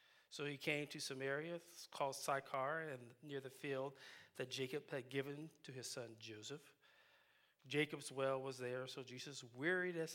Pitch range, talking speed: 130-155 Hz, 160 wpm